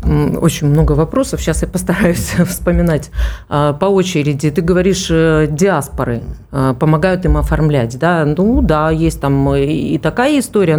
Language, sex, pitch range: Russian, female, 150-200 Hz